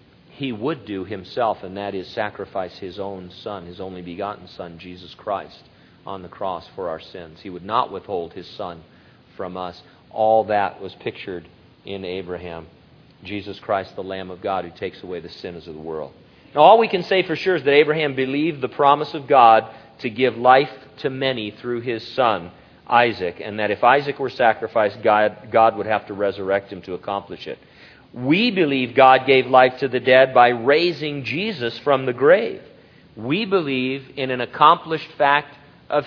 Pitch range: 105-145 Hz